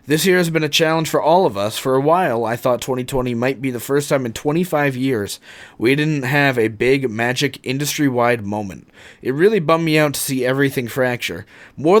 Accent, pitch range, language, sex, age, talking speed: American, 120-145 Hz, English, male, 20-39, 210 wpm